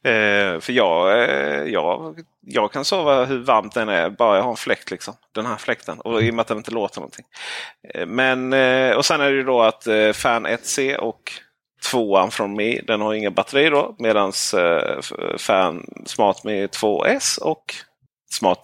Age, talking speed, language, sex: 30-49, 195 wpm, Swedish, male